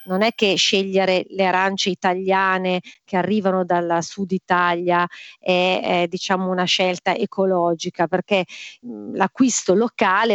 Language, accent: Italian, native